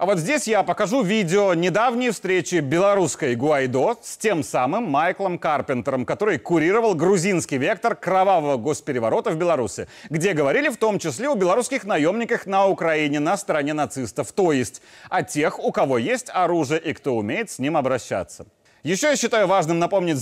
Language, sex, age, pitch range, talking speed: Russian, male, 30-49, 150-215 Hz, 165 wpm